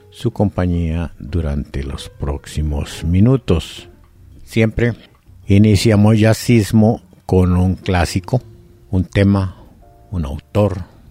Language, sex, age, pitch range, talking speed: Spanish, male, 60-79, 85-105 Hz, 90 wpm